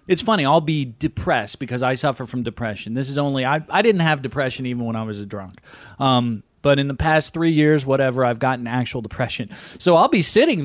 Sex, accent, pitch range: male, American, 125-180 Hz